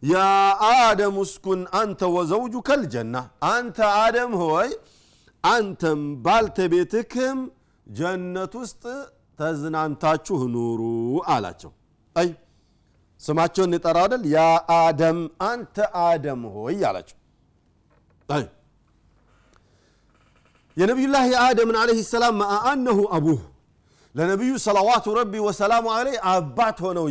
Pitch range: 160-215 Hz